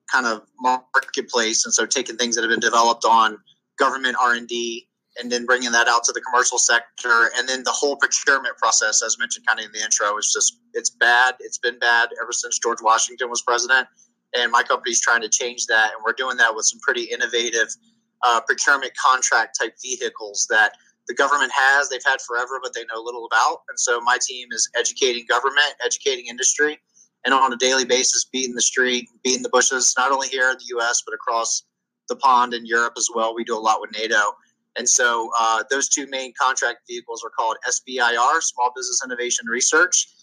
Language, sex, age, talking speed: English, male, 30-49, 205 wpm